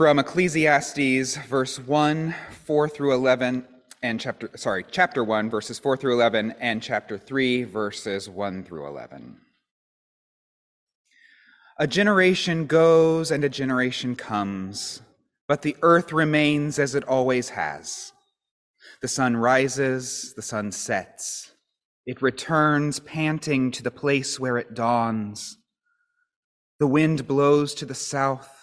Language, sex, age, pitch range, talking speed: English, male, 30-49, 120-145 Hz, 125 wpm